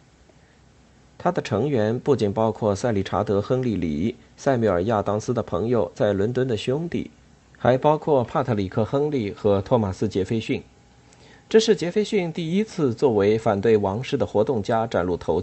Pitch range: 100-140 Hz